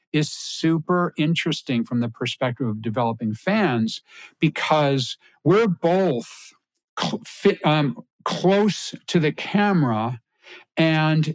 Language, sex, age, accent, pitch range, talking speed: English, male, 60-79, American, 125-170 Hz, 95 wpm